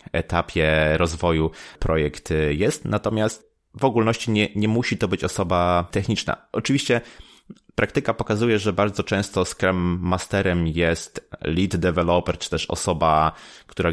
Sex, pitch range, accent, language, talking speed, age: male, 80-95 Hz, native, Polish, 125 wpm, 20-39